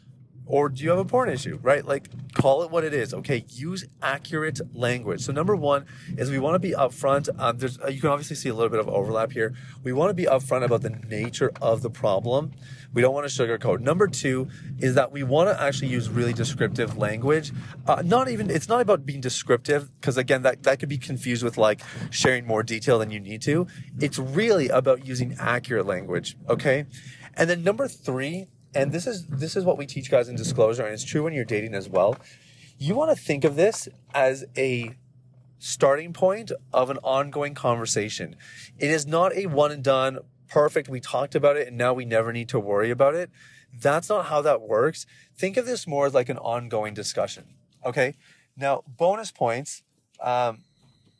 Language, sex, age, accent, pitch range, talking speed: English, male, 30-49, American, 125-155 Hz, 205 wpm